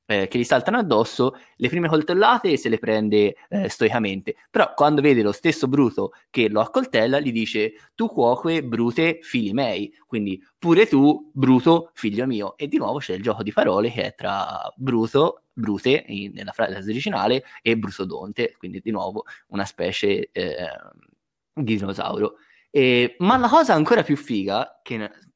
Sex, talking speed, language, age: male, 170 wpm, Italian, 20-39